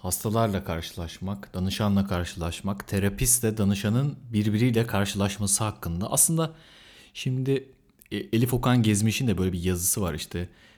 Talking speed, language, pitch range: 110 wpm, Turkish, 100-135 Hz